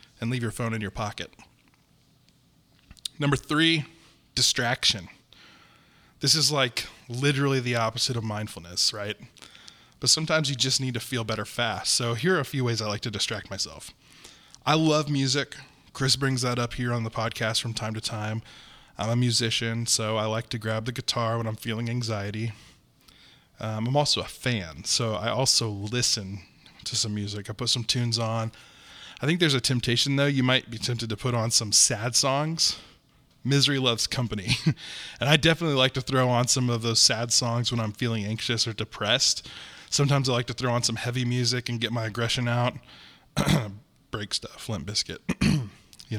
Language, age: English, 20-39